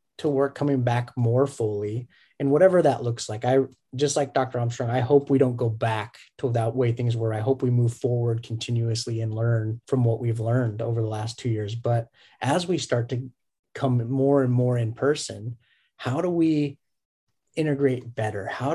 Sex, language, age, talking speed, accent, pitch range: male, English, 30-49, 195 wpm, American, 115-135 Hz